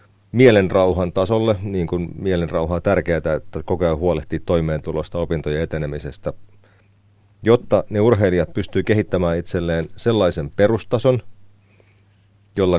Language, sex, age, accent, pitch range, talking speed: Finnish, male, 40-59, native, 90-105 Hz, 110 wpm